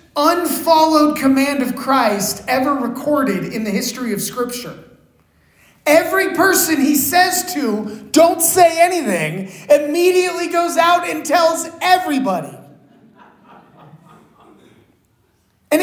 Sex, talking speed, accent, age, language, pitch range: male, 100 wpm, American, 30-49, English, 230-320 Hz